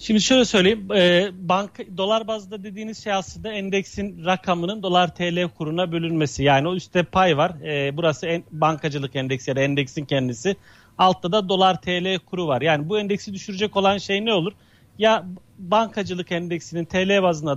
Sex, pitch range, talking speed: male, 165-200 Hz, 160 wpm